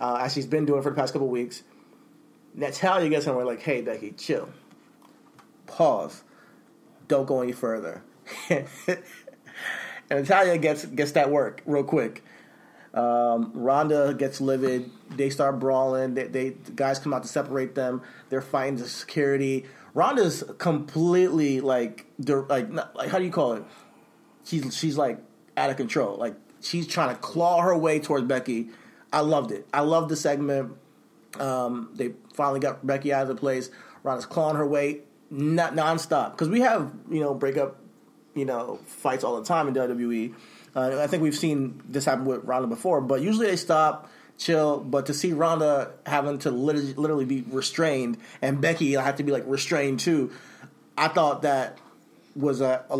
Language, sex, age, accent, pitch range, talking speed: English, male, 30-49, American, 130-155 Hz, 170 wpm